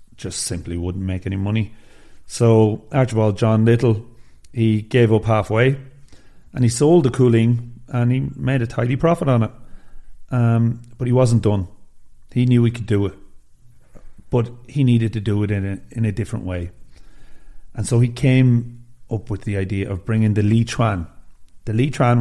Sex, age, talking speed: male, 40-59, 180 wpm